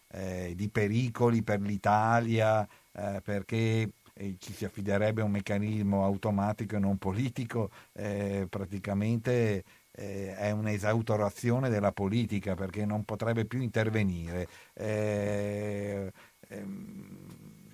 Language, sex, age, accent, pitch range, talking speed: Italian, male, 50-69, native, 100-120 Hz, 110 wpm